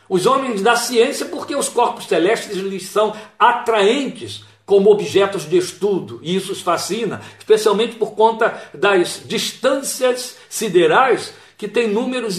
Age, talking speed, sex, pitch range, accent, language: 60-79, 135 wpm, male, 185-240 Hz, Brazilian, Portuguese